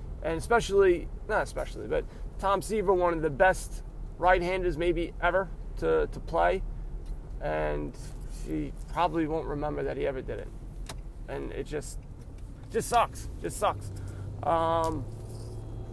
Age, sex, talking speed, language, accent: 30-49, male, 130 wpm, English, American